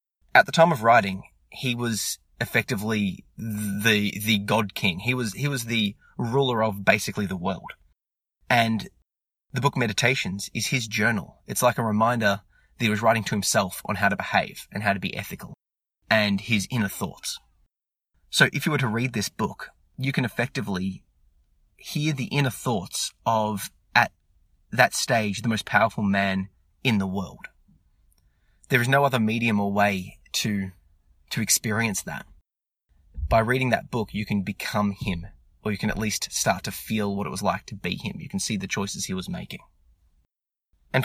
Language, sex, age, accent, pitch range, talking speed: English, male, 20-39, Australian, 100-120 Hz, 175 wpm